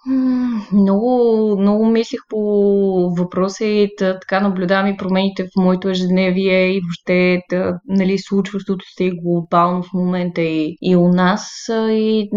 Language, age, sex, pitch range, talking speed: Bulgarian, 20-39, female, 175-200 Hz, 135 wpm